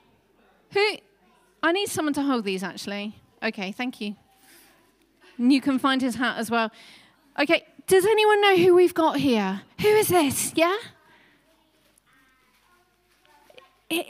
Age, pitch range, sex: 30-49, 210-315 Hz, female